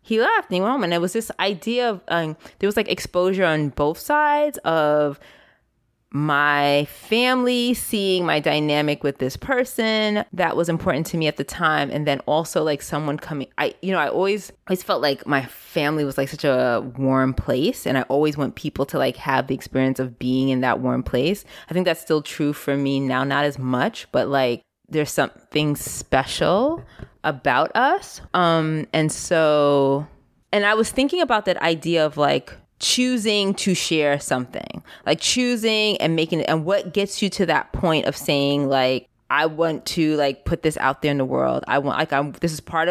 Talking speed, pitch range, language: 195 wpm, 140-185 Hz, English